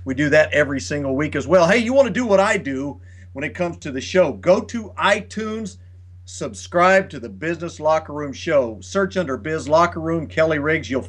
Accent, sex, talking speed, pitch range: American, male, 215 wpm, 120-175 Hz